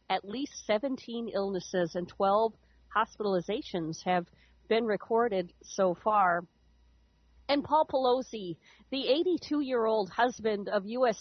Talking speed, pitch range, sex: 105 wpm, 185-230 Hz, female